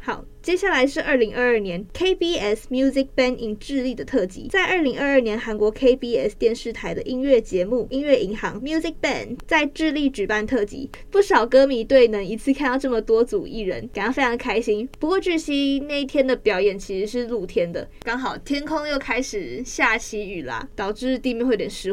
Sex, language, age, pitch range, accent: female, Chinese, 20-39, 215-280 Hz, American